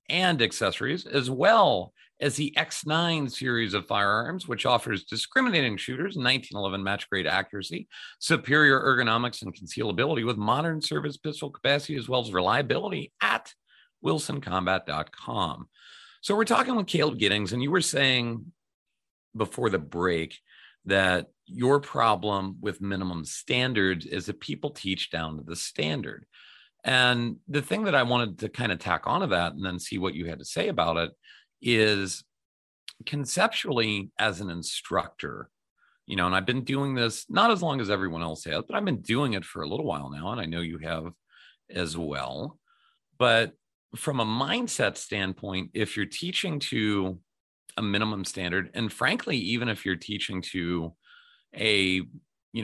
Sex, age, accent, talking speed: male, 40-59, American, 160 wpm